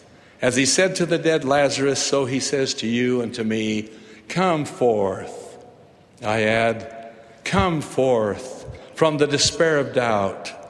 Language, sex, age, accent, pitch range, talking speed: English, male, 60-79, American, 115-140 Hz, 145 wpm